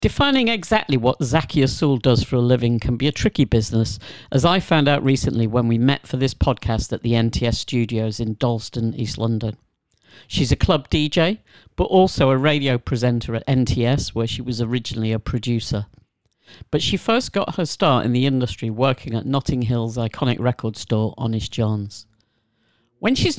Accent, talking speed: British, 180 wpm